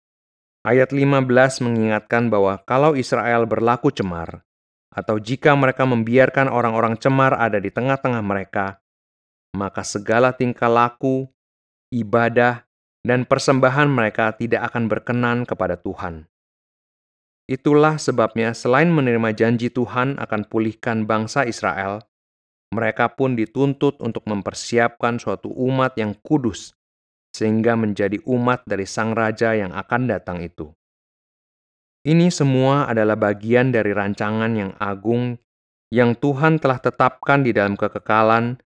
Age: 30-49